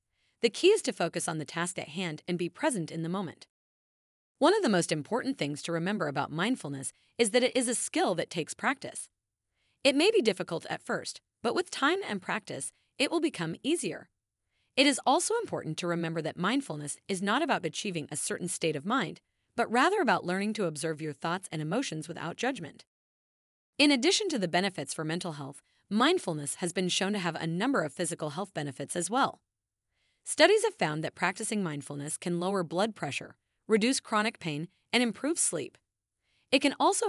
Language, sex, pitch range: English, female, 165-245 Hz